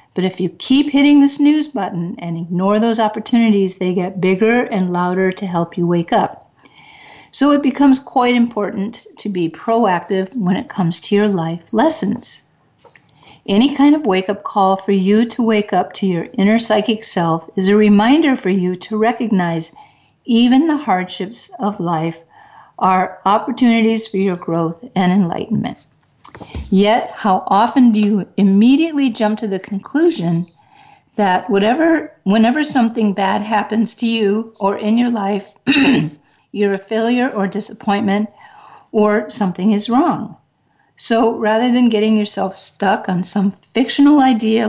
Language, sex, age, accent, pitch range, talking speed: English, female, 50-69, American, 190-235 Hz, 150 wpm